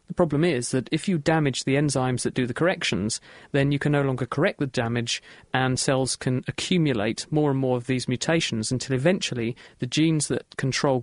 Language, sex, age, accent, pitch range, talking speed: English, male, 40-59, British, 125-155 Hz, 200 wpm